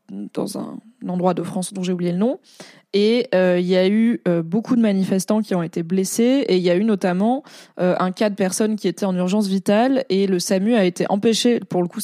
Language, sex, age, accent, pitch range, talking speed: French, female, 20-39, French, 185-220 Hz, 245 wpm